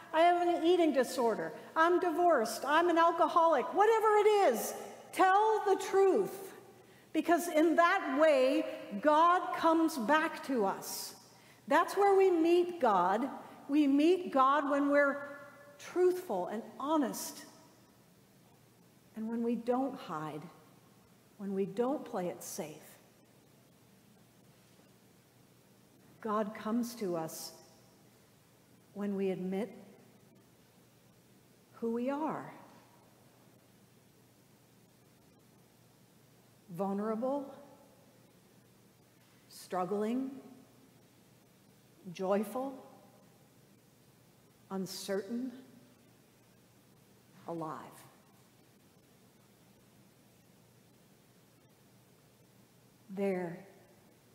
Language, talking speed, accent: English, 70 wpm, American